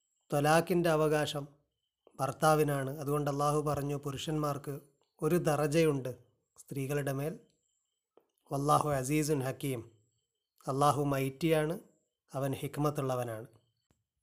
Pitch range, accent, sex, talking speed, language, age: 135-160 Hz, native, male, 75 wpm, Malayalam, 30-49